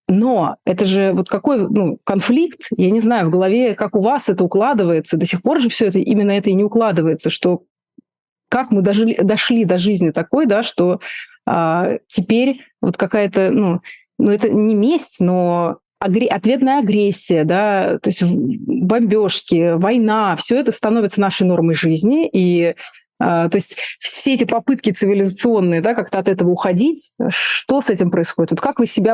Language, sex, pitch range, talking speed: Russian, female, 175-235 Hz, 170 wpm